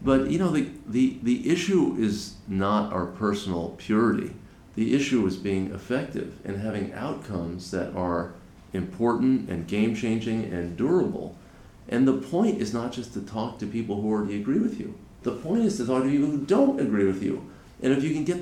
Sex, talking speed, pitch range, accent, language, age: male, 190 wpm, 100-135 Hz, American, English, 50-69